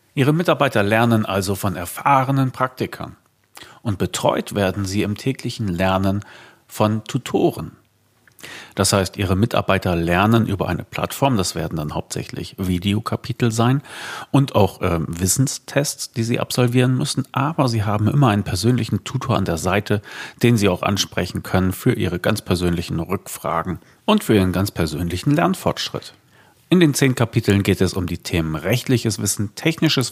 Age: 40-59